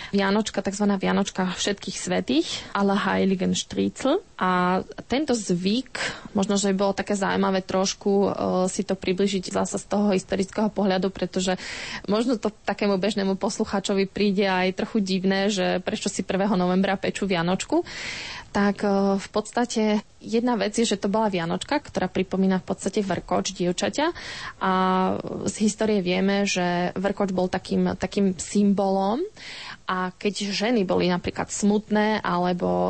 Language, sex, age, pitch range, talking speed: Slovak, female, 20-39, 185-210 Hz, 140 wpm